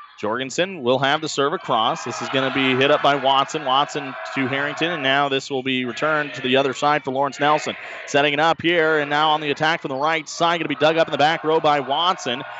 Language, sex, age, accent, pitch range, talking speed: English, male, 30-49, American, 135-160 Hz, 260 wpm